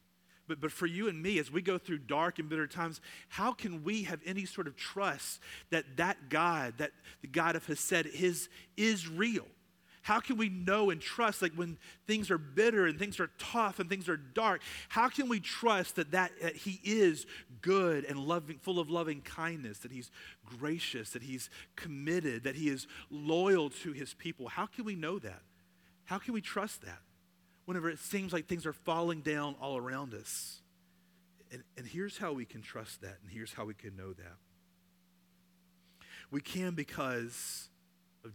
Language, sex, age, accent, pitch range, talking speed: English, male, 40-59, American, 115-180 Hz, 190 wpm